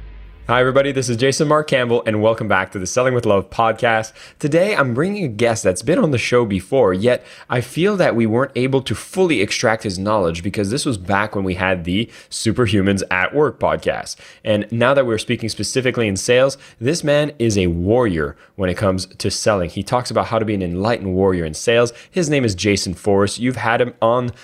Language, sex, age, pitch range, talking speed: English, male, 20-39, 100-125 Hz, 220 wpm